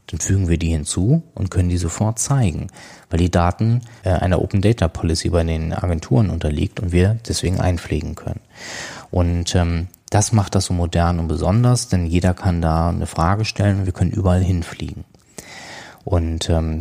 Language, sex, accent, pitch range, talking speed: German, male, German, 85-100 Hz, 160 wpm